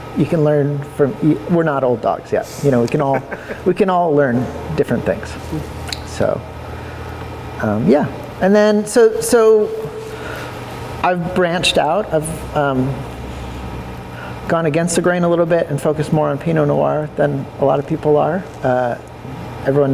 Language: English